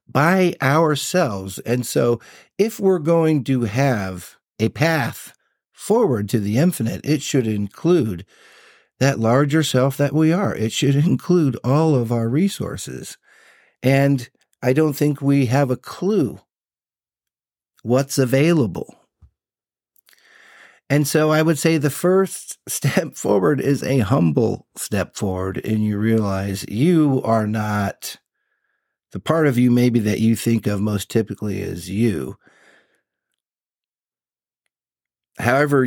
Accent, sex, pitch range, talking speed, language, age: American, male, 110-145 Hz, 125 wpm, English, 50-69